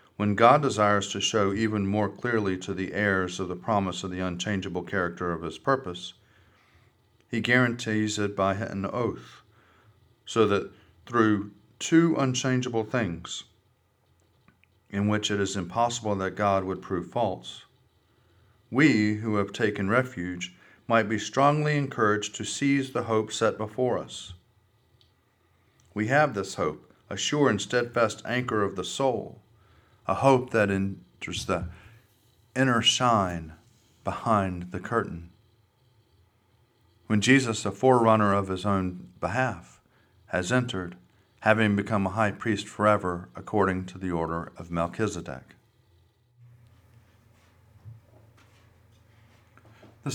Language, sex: English, male